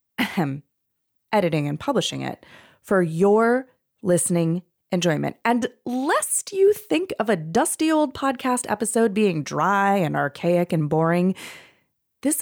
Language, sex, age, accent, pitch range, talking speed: English, female, 20-39, American, 165-245 Hz, 120 wpm